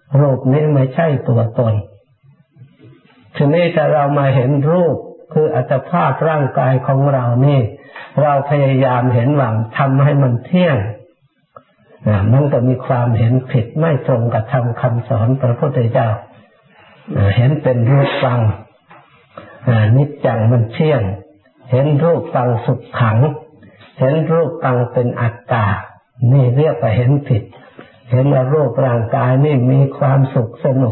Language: Thai